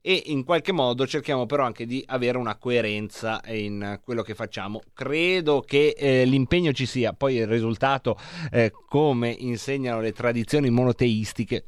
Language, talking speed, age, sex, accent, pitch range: Italian, 155 wpm, 30-49, male, native, 110-140 Hz